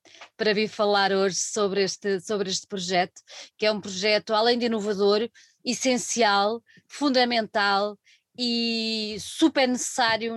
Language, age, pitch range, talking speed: Portuguese, 20-39, 195-240 Hz, 120 wpm